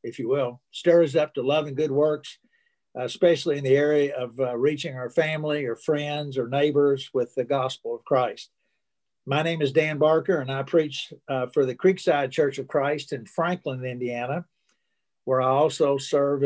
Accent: American